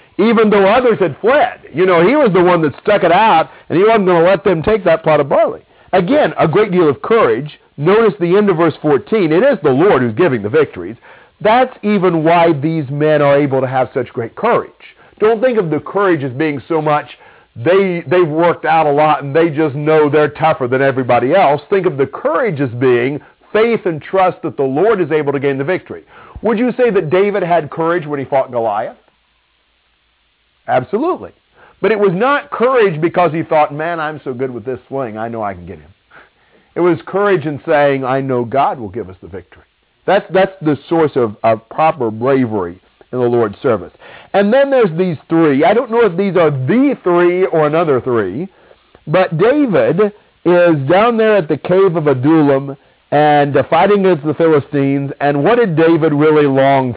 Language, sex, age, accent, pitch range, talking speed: English, male, 50-69, American, 135-185 Hz, 205 wpm